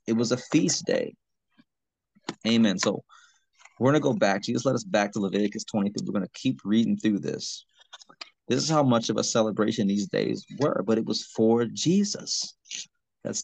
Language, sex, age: English, male, 30-49